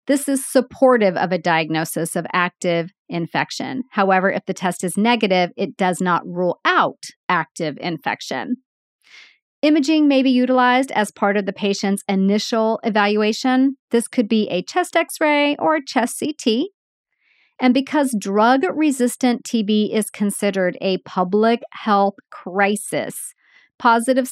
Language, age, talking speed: English, 40-59, 140 wpm